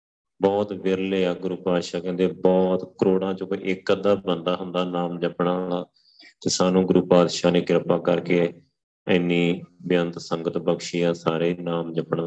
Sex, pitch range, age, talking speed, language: male, 85-90 Hz, 30-49, 150 wpm, Punjabi